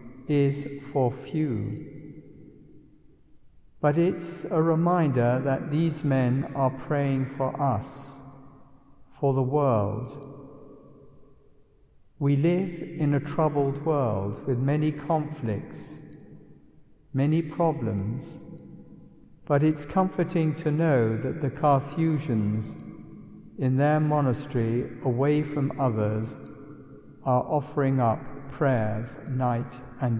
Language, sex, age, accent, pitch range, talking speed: English, male, 60-79, British, 125-150 Hz, 95 wpm